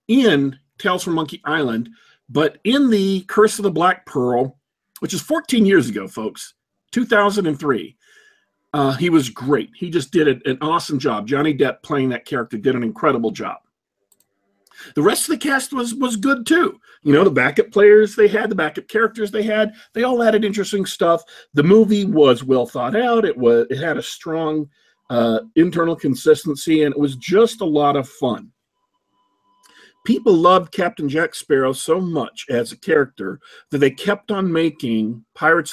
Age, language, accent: 40-59, English, American